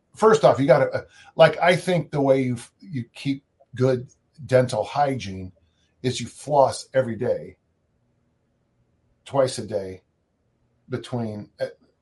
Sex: male